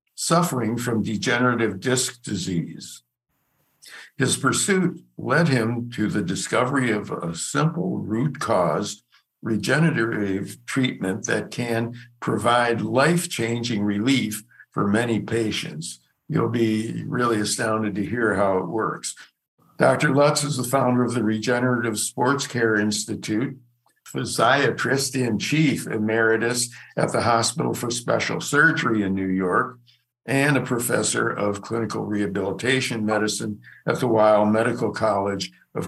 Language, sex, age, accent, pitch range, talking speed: English, male, 60-79, American, 110-130 Hz, 115 wpm